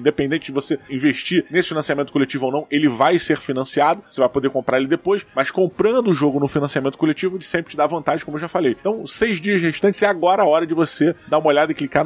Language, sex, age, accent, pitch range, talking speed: Portuguese, male, 20-39, Brazilian, 135-170 Hz, 255 wpm